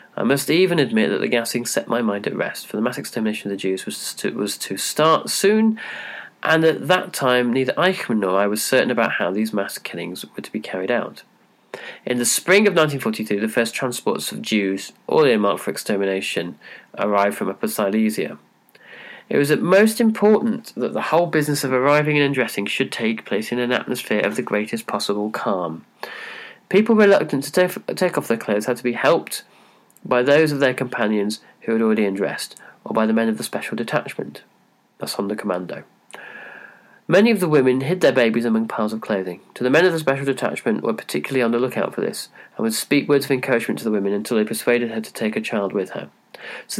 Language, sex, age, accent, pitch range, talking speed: English, male, 30-49, British, 110-160 Hz, 215 wpm